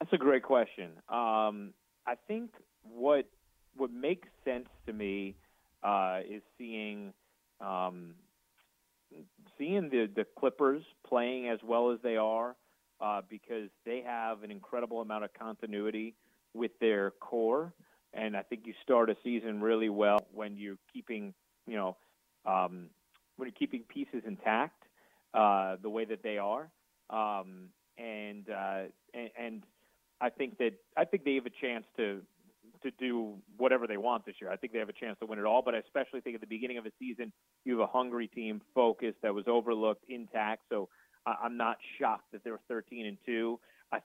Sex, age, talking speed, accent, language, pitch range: male, 40-59, 175 wpm, American, English, 105-125 Hz